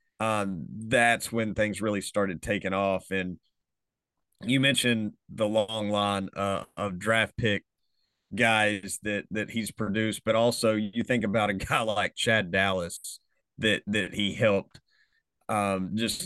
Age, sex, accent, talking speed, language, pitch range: 30-49, male, American, 145 wpm, English, 100-130 Hz